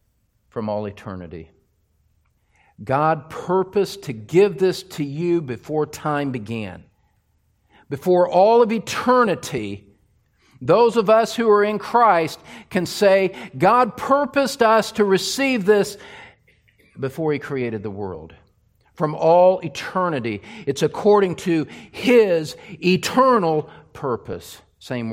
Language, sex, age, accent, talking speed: English, male, 50-69, American, 110 wpm